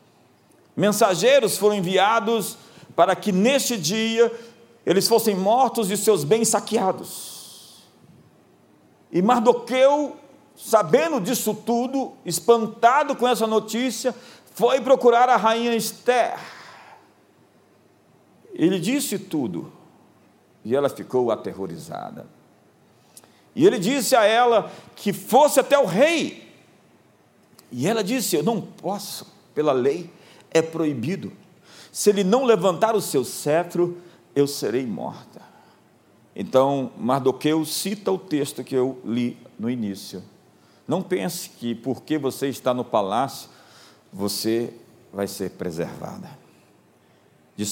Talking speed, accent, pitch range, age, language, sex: 110 wpm, Brazilian, 150-235 Hz, 50-69, Portuguese, male